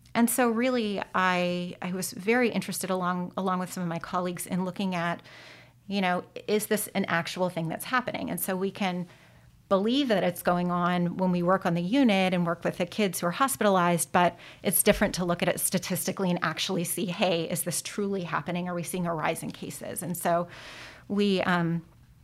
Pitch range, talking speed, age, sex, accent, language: 175-200 Hz, 210 wpm, 30-49, female, American, English